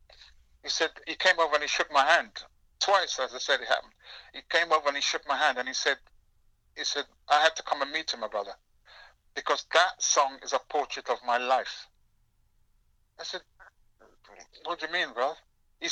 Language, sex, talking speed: English, male, 205 wpm